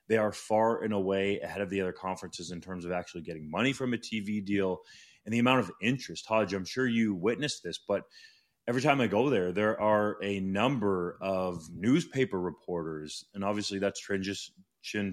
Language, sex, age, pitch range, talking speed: English, male, 20-39, 95-115 Hz, 190 wpm